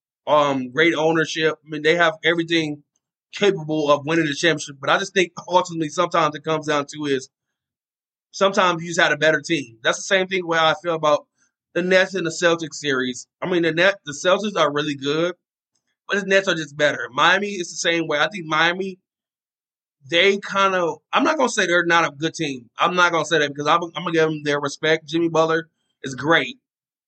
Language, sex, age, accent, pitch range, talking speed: English, male, 20-39, American, 150-180 Hz, 220 wpm